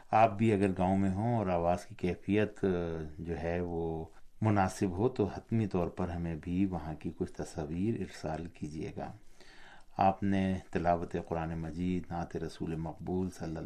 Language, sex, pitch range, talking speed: Urdu, male, 85-100 Hz, 165 wpm